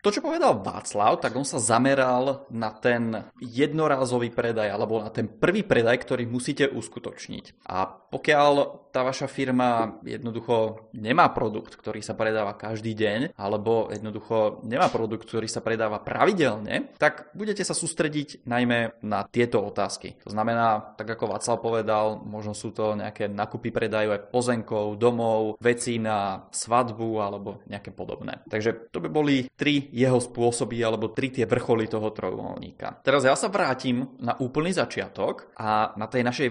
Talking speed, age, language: 155 wpm, 20-39, Czech